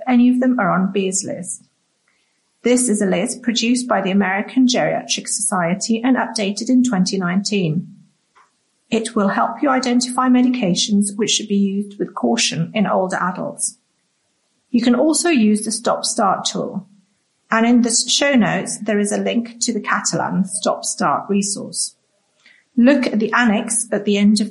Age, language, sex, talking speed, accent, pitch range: 40-59, English, female, 165 wpm, British, 200-245 Hz